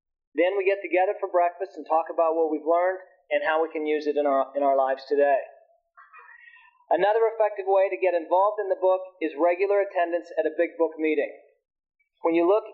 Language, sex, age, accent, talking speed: English, male, 40-59, American, 205 wpm